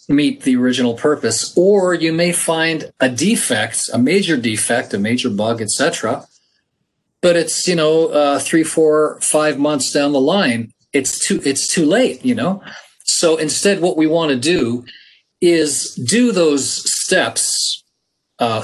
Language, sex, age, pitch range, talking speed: English, male, 40-59, 130-170 Hz, 155 wpm